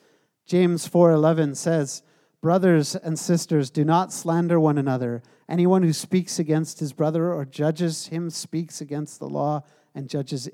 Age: 50-69